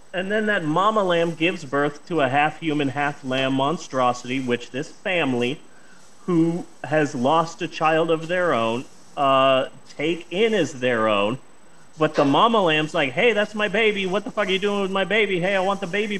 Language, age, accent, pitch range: English, 30-49, American, 145-205 Hz